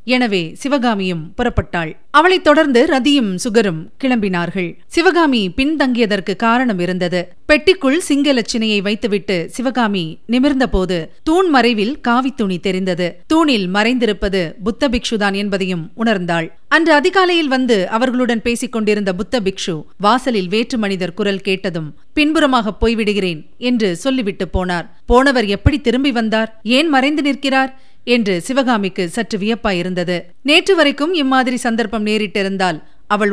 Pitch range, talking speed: 195-260 Hz, 110 wpm